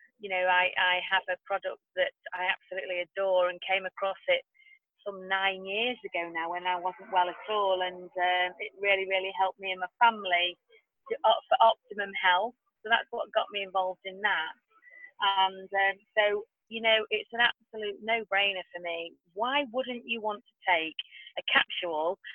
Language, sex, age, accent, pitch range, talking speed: English, female, 30-49, British, 185-240 Hz, 180 wpm